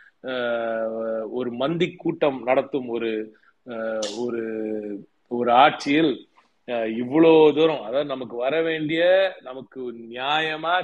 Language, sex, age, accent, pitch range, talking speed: Tamil, male, 30-49, native, 120-150 Hz, 85 wpm